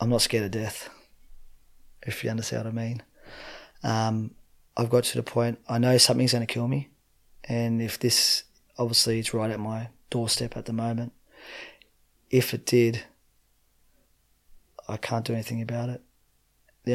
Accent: Australian